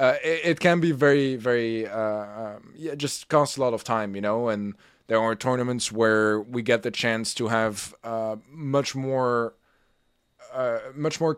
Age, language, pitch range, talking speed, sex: 20-39, English, 120-150 Hz, 190 wpm, male